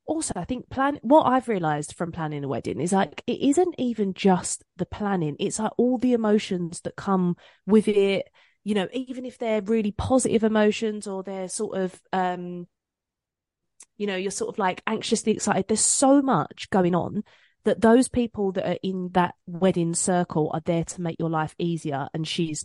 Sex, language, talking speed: female, English, 190 wpm